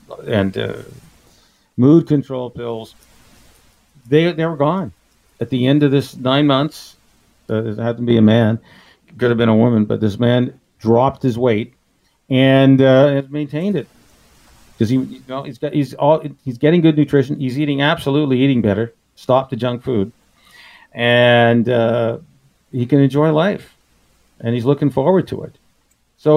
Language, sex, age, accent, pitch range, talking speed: English, male, 50-69, American, 120-150 Hz, 165 wpm